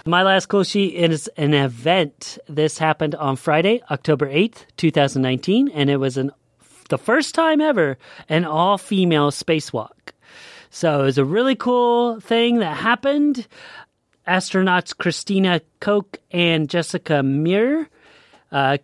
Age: 30-49